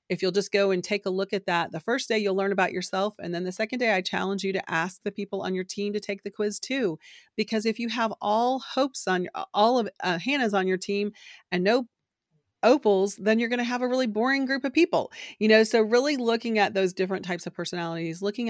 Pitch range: 175-215 Hz